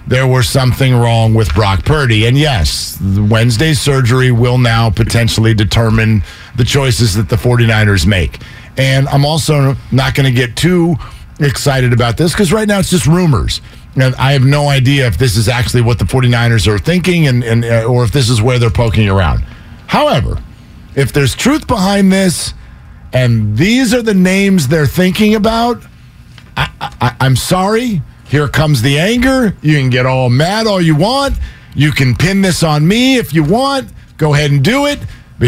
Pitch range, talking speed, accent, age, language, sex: 115-185 Hz, 180 wpm, American, 50-69, English, male